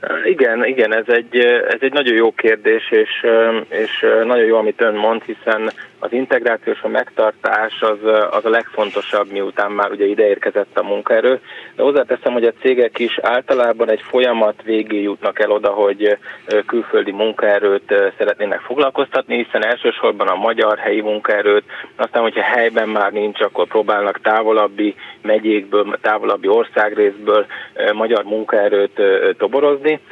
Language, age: Hungarian, 20-39